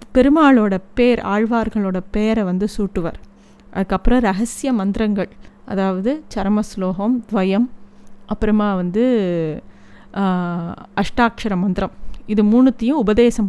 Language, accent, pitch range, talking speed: Tamil, native, 195-240 Hz, 85 wpm